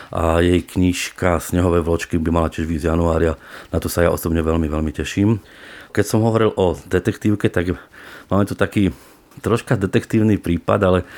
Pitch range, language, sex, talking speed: 85-95 Hz, Slovak, male, 170 wpm